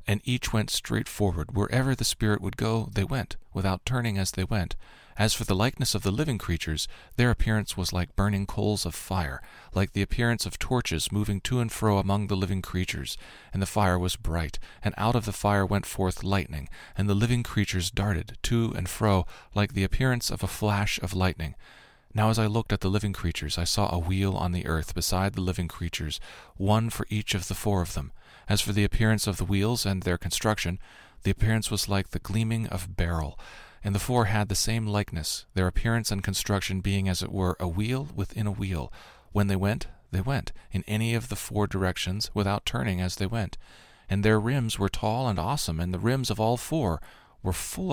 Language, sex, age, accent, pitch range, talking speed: English, male, 40-59, American, 90-110 Hz, 215 wpm